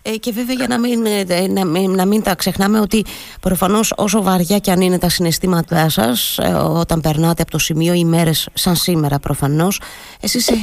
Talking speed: 175 wpm